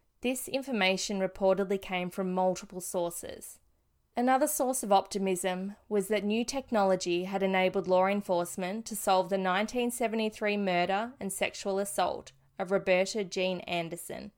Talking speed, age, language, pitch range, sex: 130 wpm, 20-39, English, 185-220 Hz, female